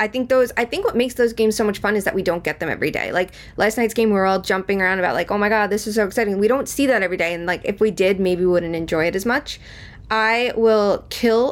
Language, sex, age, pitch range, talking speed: English, female, 20-39, 180-220 Hz, 305 wpm